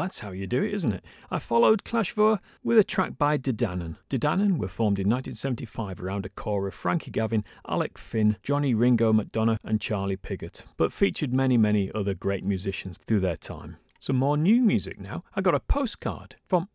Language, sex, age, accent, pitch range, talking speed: English, male, 40-59, British, 100-150 Hz, 195 wpm